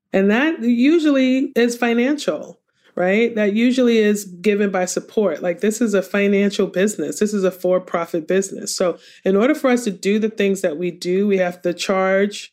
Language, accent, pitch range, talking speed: English, American, 175-210 Hz, 185 wpm